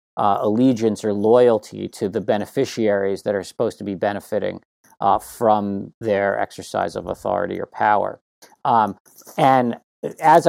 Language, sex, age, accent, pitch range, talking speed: English, male, 40-59, American, 105-120 Hz, 135 wpm